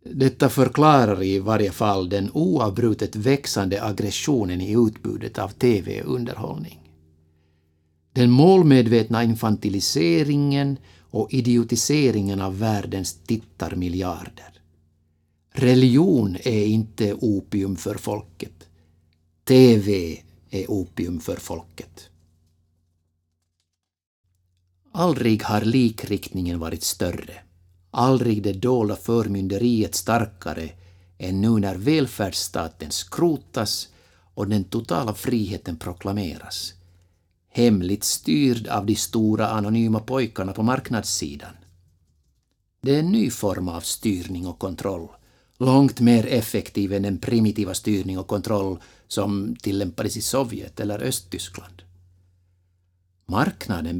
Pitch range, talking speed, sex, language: 90-115 Hz, 95 wpm, male, English